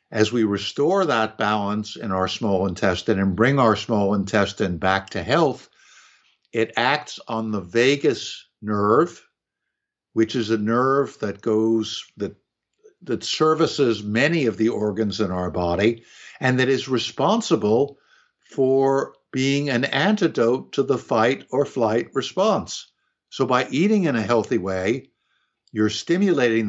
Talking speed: 140 wpm